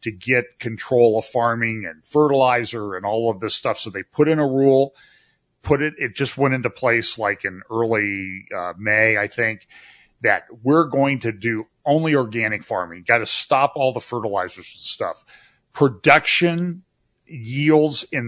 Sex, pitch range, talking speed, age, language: male, 110-135 Hz, 165 wpm, 40-59, English